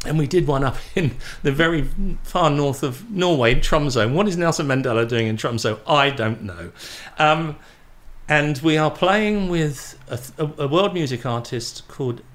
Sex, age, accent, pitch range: male, 50-69, British, 125-170 Hz